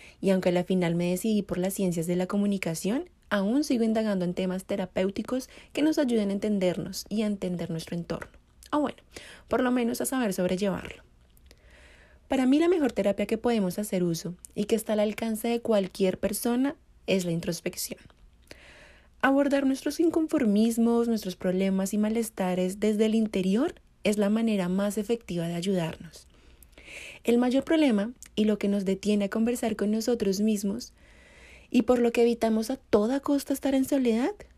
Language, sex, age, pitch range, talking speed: Spanish, female, 30-49, 185-245 Hz, 170 wpm